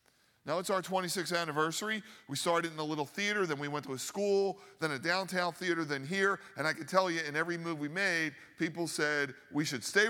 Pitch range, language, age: 145-195 Hz, English, 50-69